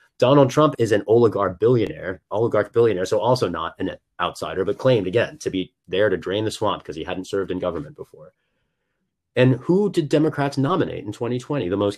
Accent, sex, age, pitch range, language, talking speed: American, male, 30-49, 100-145 Hz, English, 195 wpm